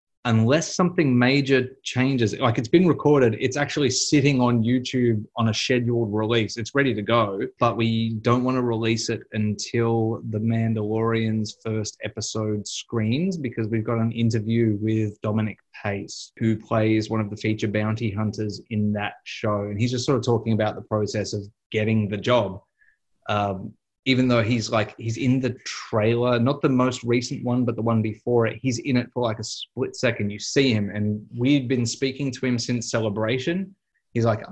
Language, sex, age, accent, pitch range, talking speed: English, male, 20-39, Australian, 110-130 Hz, 185 wpm